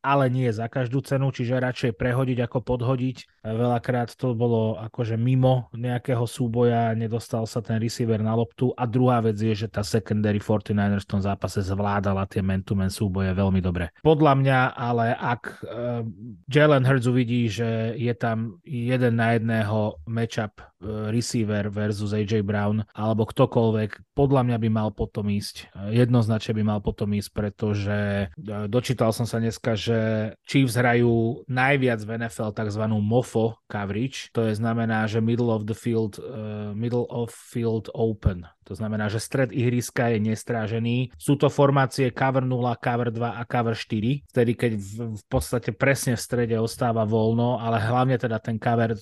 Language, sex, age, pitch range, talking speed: Slovak, male, 30-49, 110-125 Hz, 160 wpm